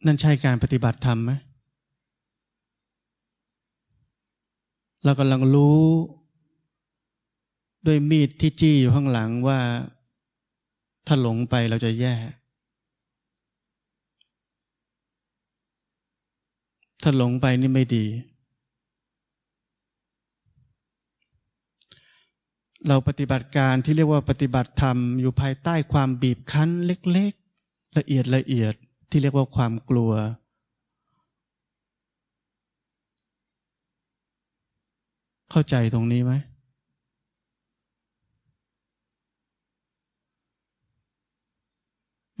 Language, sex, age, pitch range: Thai, male, 20-39, 125-150 Hz